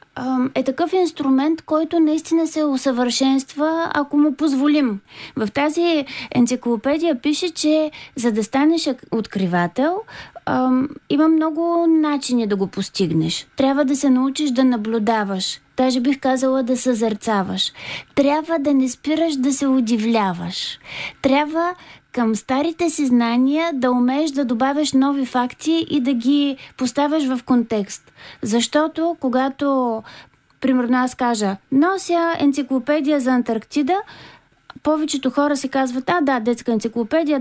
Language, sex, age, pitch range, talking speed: Bulgarian, female, 20-39, 235-300 Hz, 120 wpm